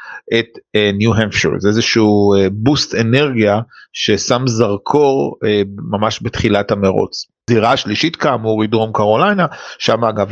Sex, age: male, 50-69